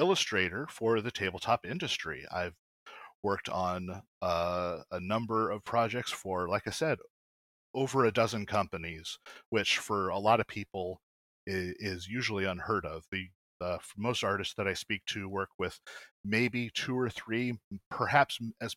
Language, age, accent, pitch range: English, 30-49, American, 95-125 Hz